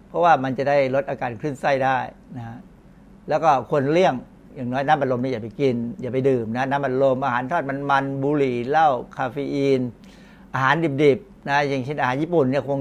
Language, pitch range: Thai, 130-160 Hz